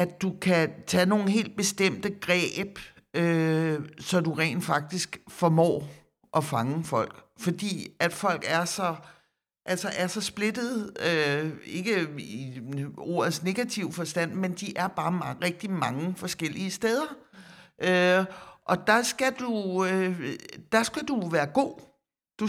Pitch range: 165-195 Hz